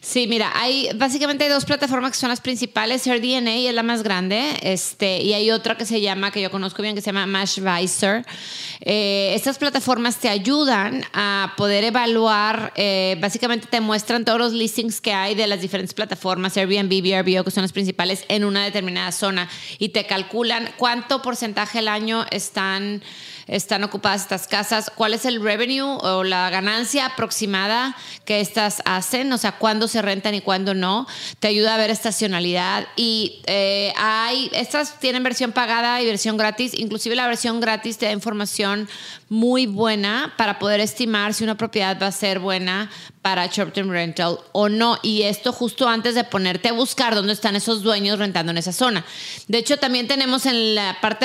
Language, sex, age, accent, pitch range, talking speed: Spanish, female, 30-49, Mexican, 195-235 Hz, 185 wpm